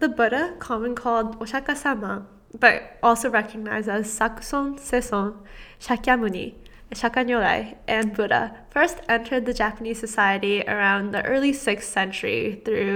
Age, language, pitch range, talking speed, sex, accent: 10-29, English, 215-260 Hz, 120 wpm, female, American